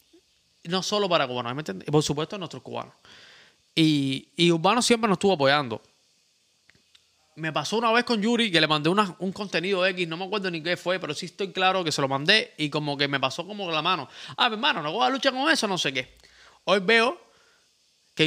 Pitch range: 160-210 Hz